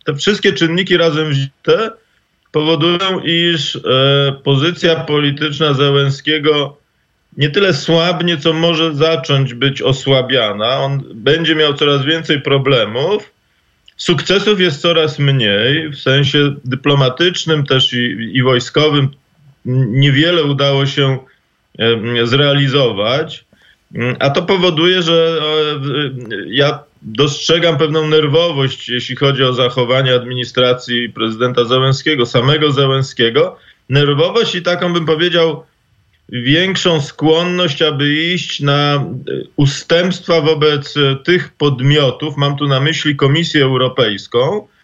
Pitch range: 135-165 Hz